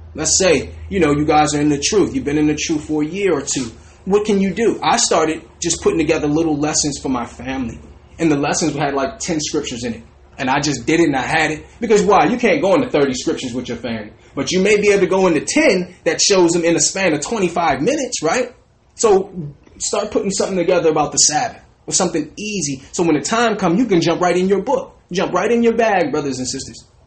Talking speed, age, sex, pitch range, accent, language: 250 wpm, 30-49, male, 145-185 Hz, American, English